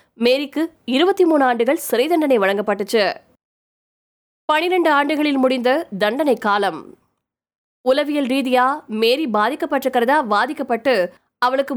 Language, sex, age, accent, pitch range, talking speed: Tamil, female, 20-39, native, 225-290 Hz, 90 wpm